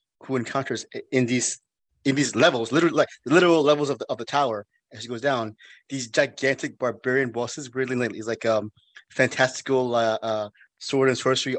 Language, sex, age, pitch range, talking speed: English, male, 20-39, 115-140 Hz, 190 wpm